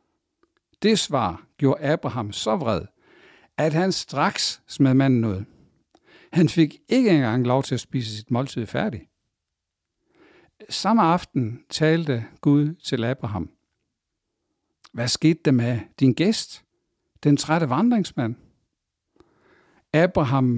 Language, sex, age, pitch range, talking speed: English, male, 60-79, 120-155 Hz, 115 wpm